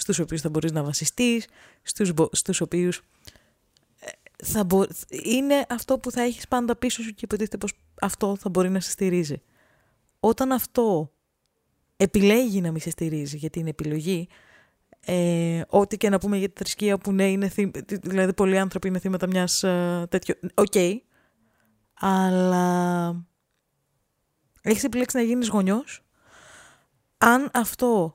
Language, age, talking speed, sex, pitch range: Greek, 20-39, 145 wpm, female, 175-225 Hz